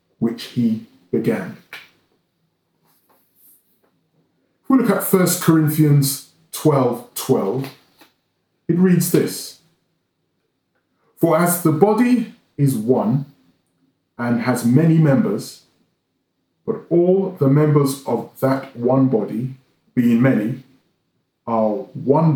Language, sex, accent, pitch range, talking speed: English, male, British, 130-170 Hz, 95 wpm